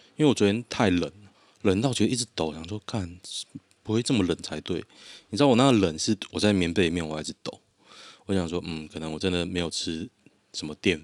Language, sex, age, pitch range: Chinese, male, 20-39, 85-105 Hz